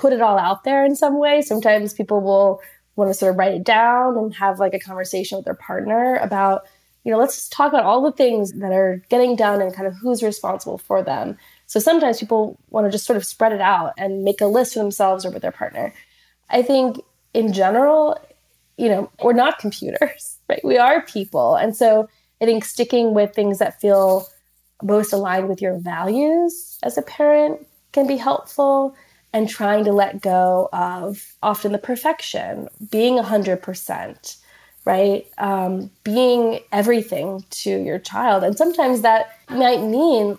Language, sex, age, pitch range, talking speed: English, female, 20-39, 195-240 Hz, 185 wpm